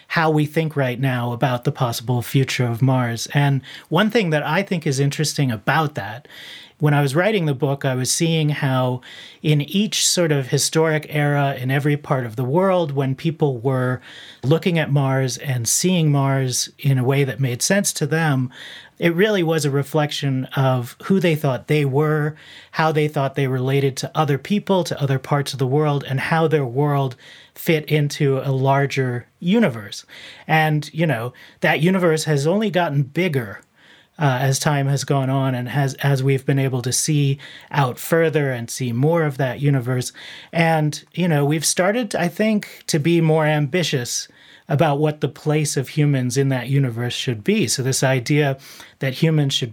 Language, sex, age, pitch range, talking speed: English, male, 30-49, 135-160 Hz, 185 wpm